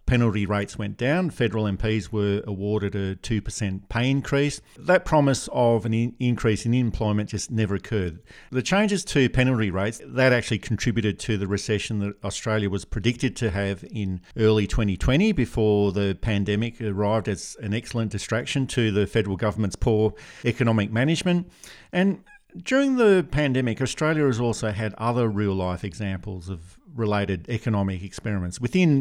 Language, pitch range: English, 105-125 Hz